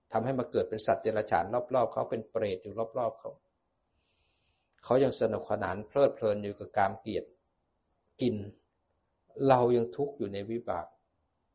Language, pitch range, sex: Thai, 90-115 Hz, male